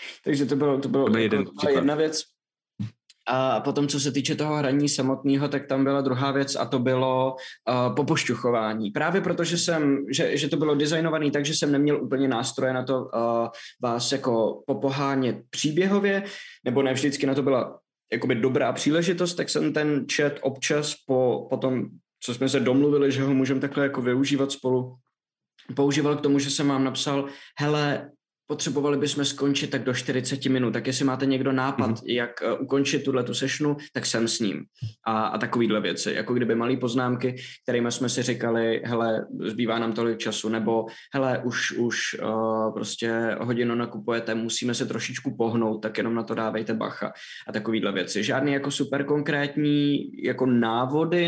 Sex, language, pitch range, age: male, Czech, 120-145 Hz, 20-39